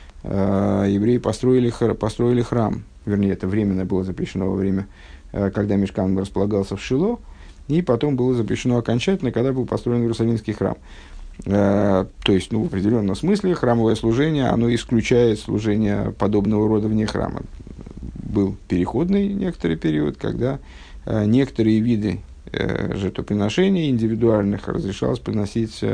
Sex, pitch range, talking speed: male, 95-125 Hz, 120 wpm